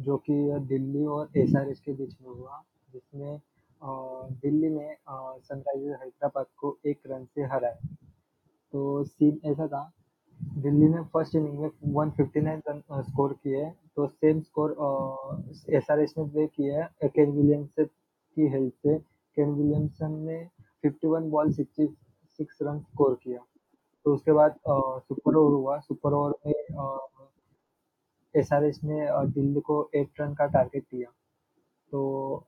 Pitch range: 140-150 Hz